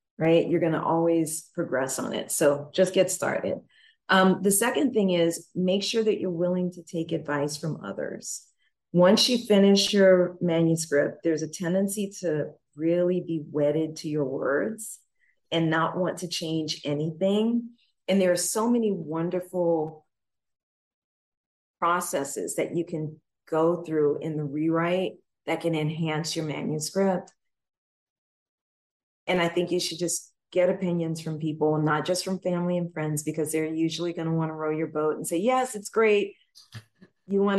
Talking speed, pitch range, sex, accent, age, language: 160 wpm, 155-190 Hz, female, American, 40-59, English